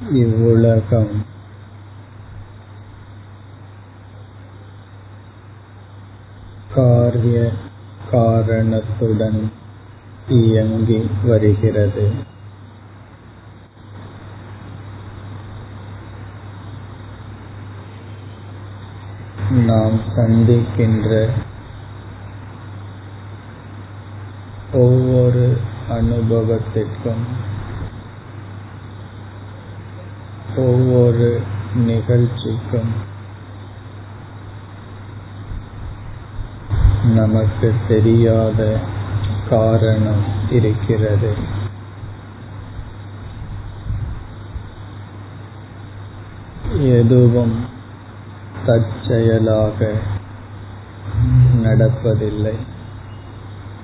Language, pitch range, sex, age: Tamil, 100-110 Hz, female, 50-69